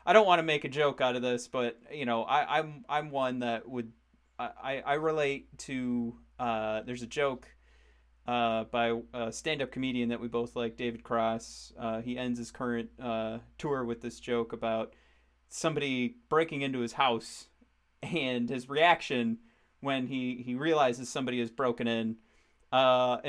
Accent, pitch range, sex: American, 115-145 Hz, male